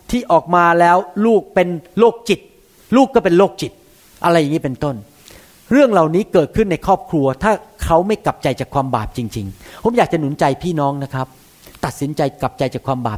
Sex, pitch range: male, 145-225 Hz